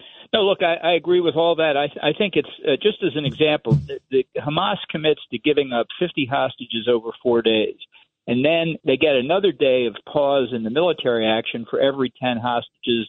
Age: 50-69